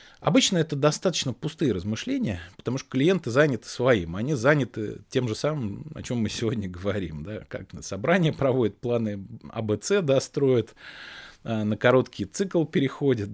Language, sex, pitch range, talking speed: Russian, male, 105-135 Hz, 150 wpm